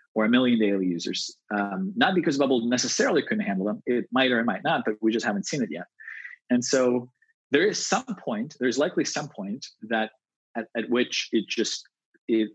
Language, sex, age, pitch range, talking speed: English, male, 30-49, 110-160 Hz, 205 wpm